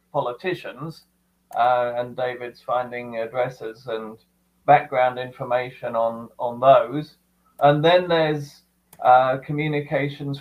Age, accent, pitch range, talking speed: 40-59, British, 120-150 Hz, 100 wpm